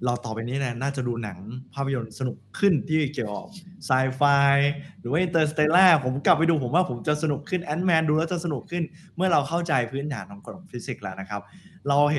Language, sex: Thai, male